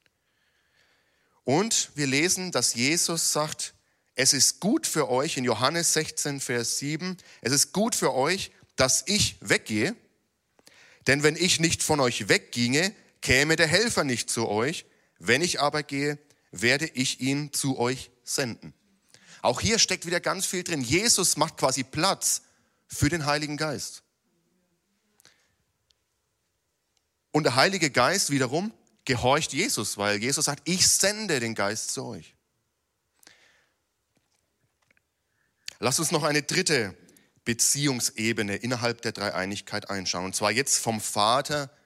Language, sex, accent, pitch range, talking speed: German, male, German, 120-155 Hz, 135 wpm